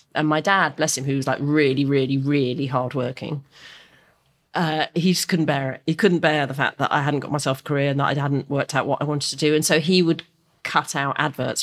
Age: 30-49